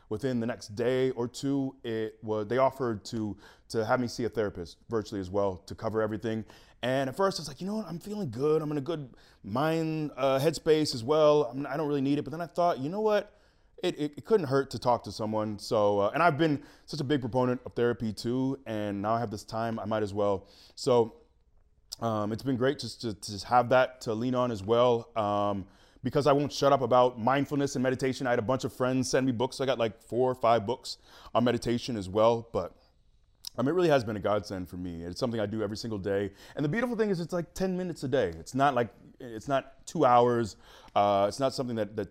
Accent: American